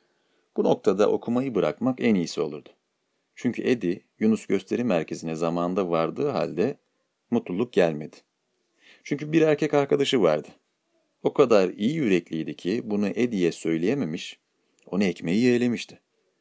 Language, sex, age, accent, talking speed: Turkish, male, 40-59, native, 120 wpm